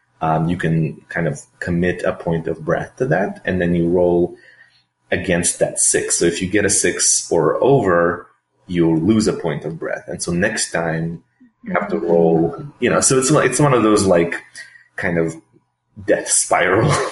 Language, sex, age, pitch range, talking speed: English, male, 30-49, 80-90 Hz, 190 wpm